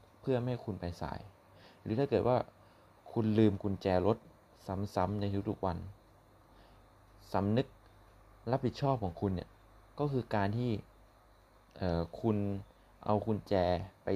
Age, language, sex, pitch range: 20-39, Thai, male, 95-115 Hz